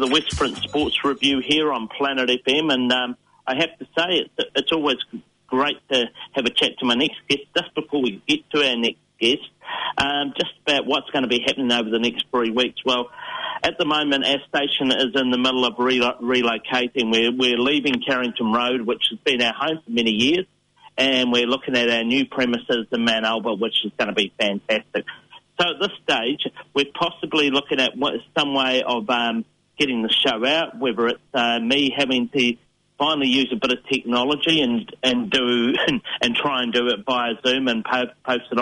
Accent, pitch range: Australian, 120-150 Hz